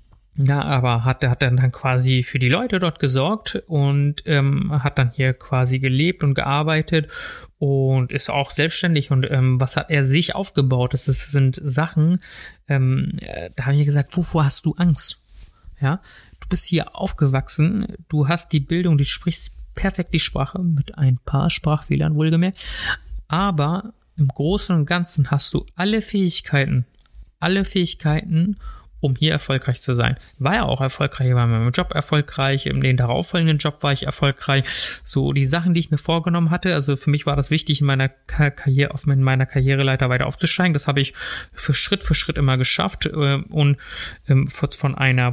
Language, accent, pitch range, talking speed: German, German, 135-170 Hz, 175 wpm